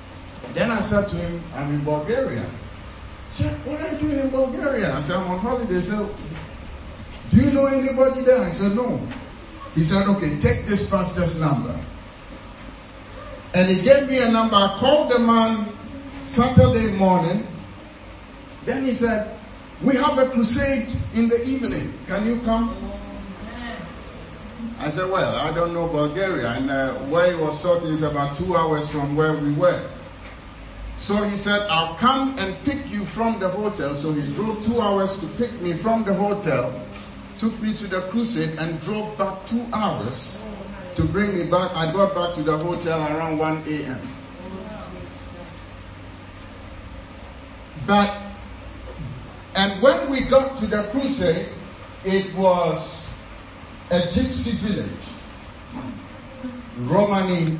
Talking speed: 150 wpm